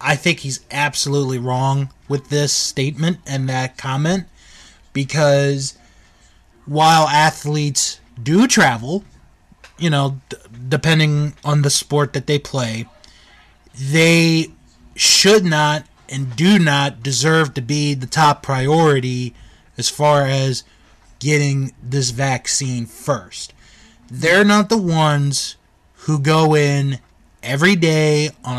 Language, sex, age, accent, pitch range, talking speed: English, male, 20-39, American, 130-165 Hz, 115 wpm